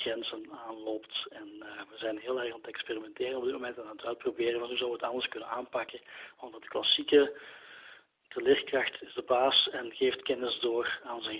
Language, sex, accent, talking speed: Dutch, male, Dutch, 210 wpm